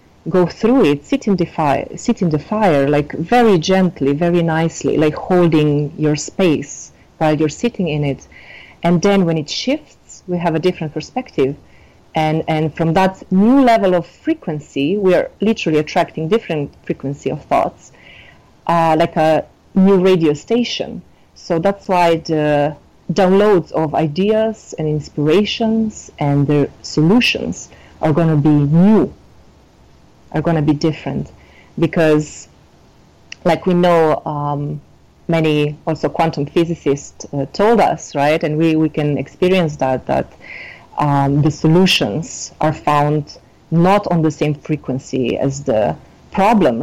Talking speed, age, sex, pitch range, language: 145 wpm, 40-59, female, 145-180 Hz, English